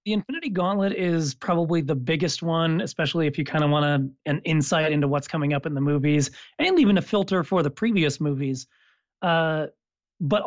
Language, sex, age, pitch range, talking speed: English, male, 30-49, 145-185 Hz, 190 wpm